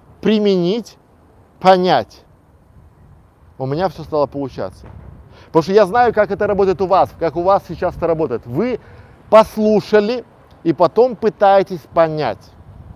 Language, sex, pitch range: Russian, male, 115-185 Hz